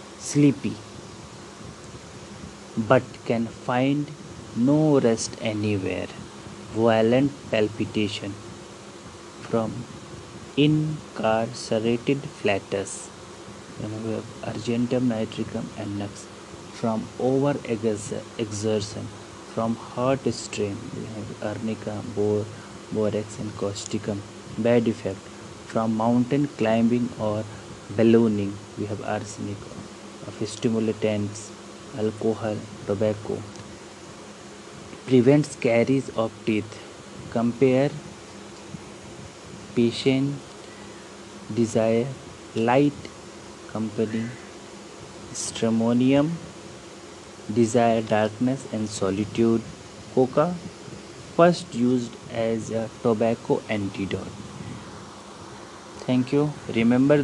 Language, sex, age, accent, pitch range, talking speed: English, male, 30-49, Indian, 105-125 Hz, 75 wpm